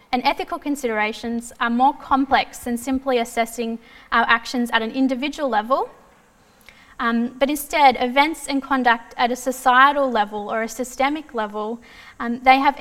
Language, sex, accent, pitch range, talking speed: English, female, Australian, 235-275 Hz, 150 wpm